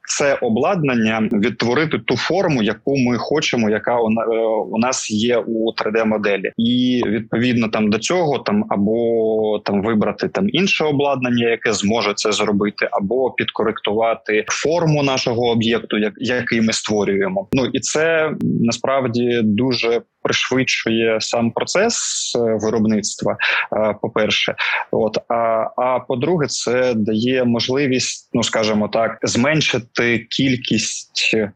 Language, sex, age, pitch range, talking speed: Ukrainian, male, 20-39, 110-125 Hz, 115 wpm